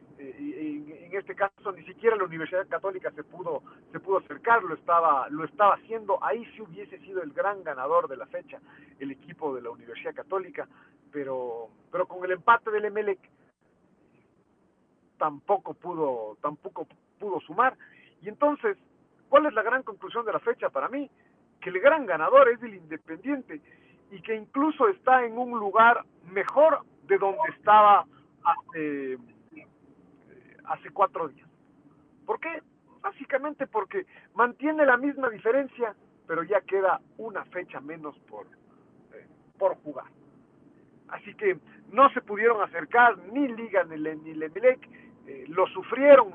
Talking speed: 145 wpm